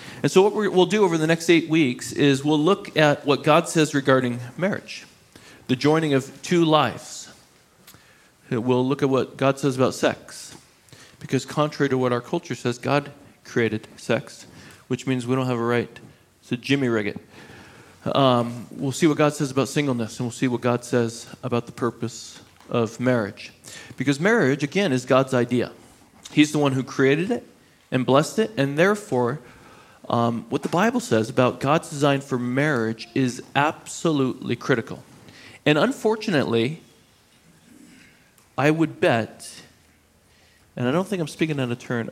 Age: 40-59